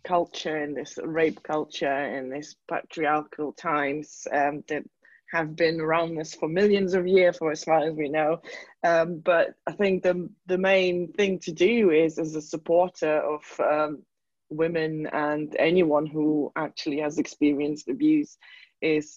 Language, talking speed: English, 155 wpm